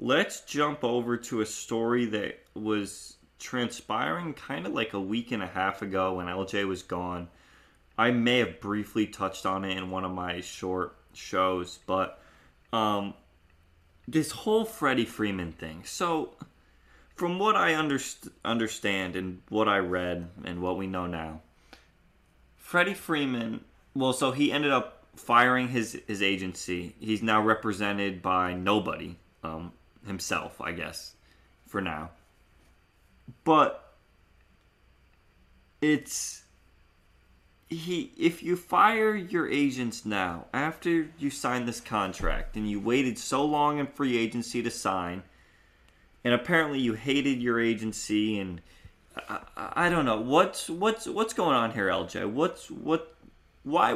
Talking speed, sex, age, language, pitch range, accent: 135 wpm, male, 20-39, English, 90-135 Hz, American